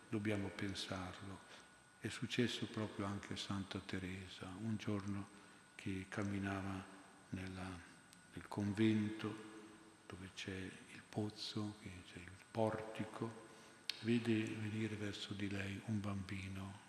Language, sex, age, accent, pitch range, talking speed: Italian, male, 50-69, native, 95-110 Hz, 105 wpm